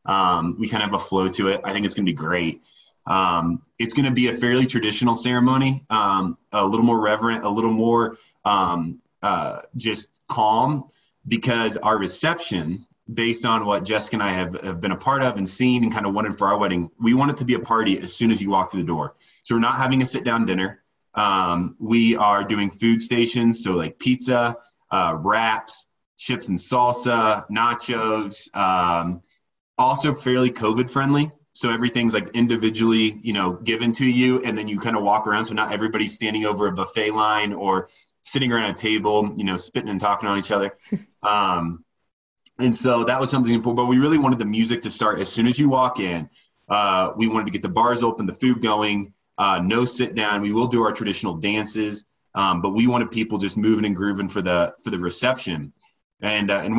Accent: American